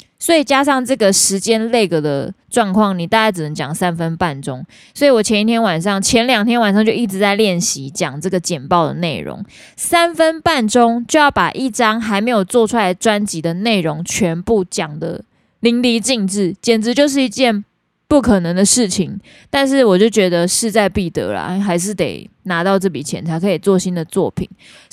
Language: Chinese